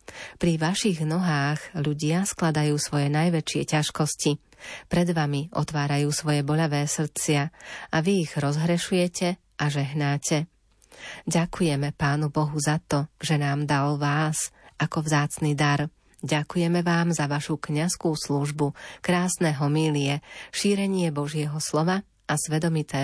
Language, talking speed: Slovak, 115 wpm